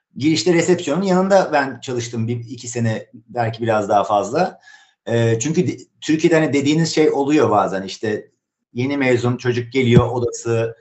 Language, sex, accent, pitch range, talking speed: Turkish, male, native, 110-140 Hz, 150 wpm